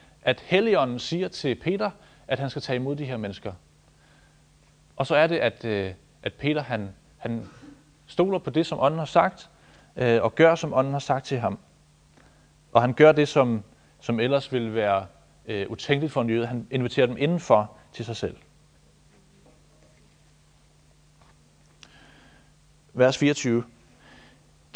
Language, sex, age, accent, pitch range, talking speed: Danish, male, 30-49, native, 120-165 Hz, 145 wpm